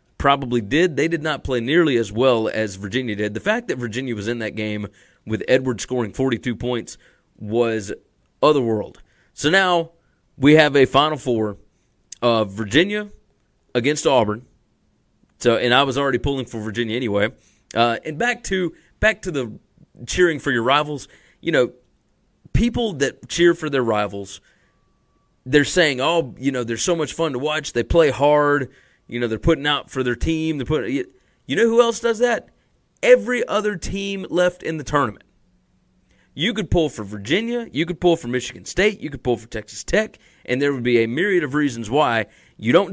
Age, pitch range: 30-49, 120-165 Hz